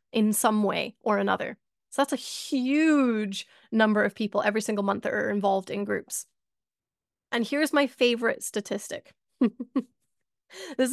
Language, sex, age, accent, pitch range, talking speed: English, female, 20-39, American, 215-275 Hz, 145 wpm